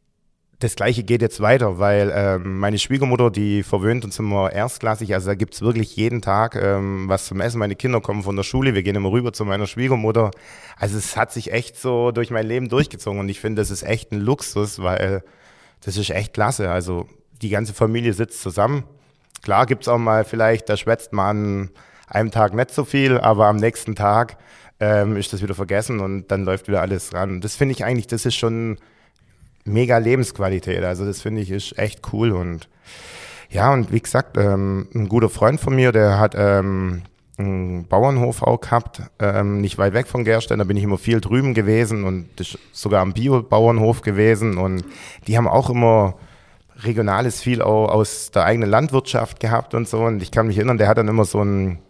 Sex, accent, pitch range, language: male, German, 100-120 Hz, German